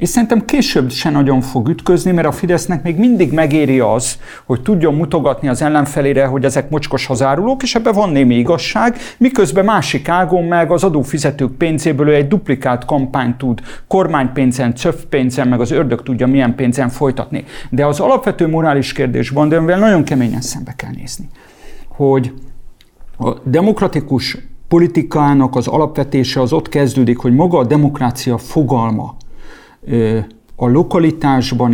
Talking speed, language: 145 wpm, English